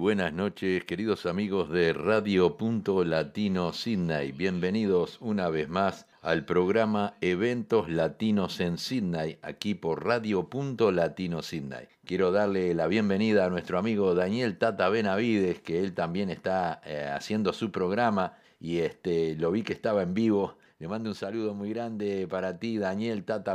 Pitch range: 85-105 Hz